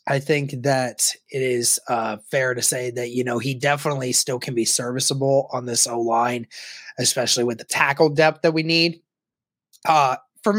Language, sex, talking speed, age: English, male, 175 wpm, 20-39